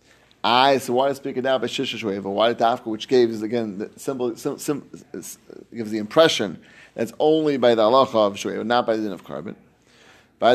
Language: English